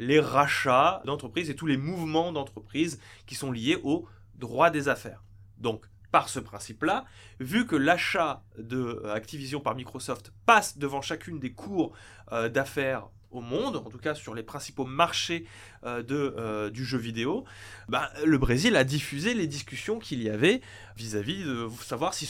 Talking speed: 165 wpm